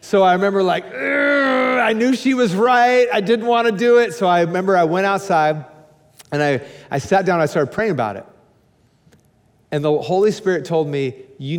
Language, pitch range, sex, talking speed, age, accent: English, 150-220 Hz, male, 195 wpm, 40-59, American